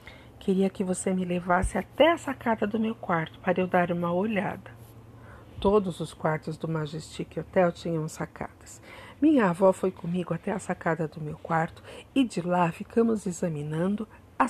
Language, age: Portuguese, 50-69